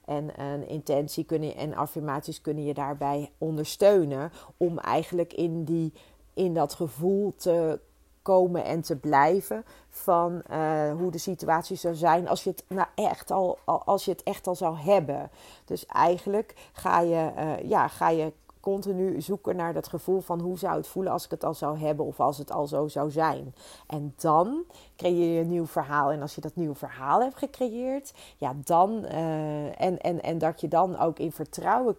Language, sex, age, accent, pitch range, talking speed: Dutch, female, 40-59, Dutch, 150-175 Hz, 190 wpm